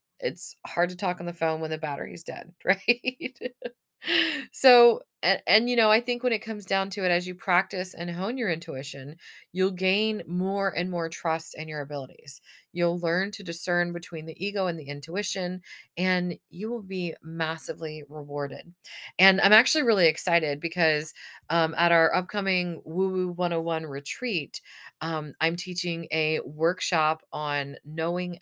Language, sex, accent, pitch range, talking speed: English, female, American, 155-185 Hz, 165 wpm